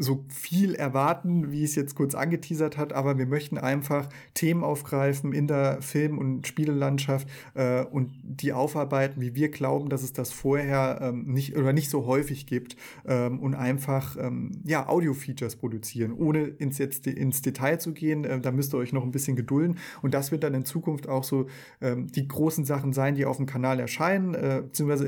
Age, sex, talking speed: 30-49, male, 185 wpm